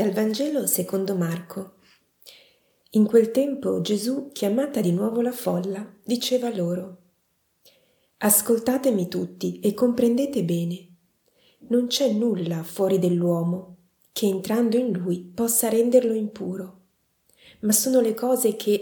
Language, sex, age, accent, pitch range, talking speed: Italian, female, 30-49, native, 180-225 Hz, 120 wpm